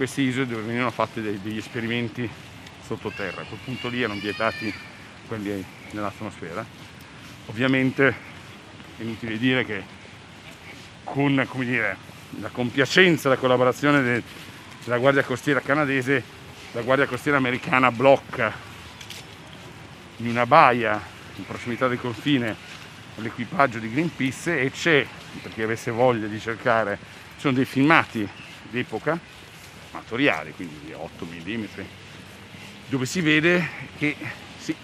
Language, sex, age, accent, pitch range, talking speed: Italian, male, 50-69, native, 110-140 Hz, 120 wpm